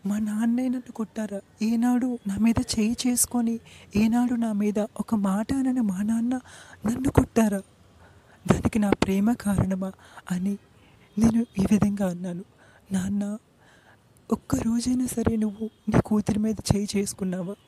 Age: 30-49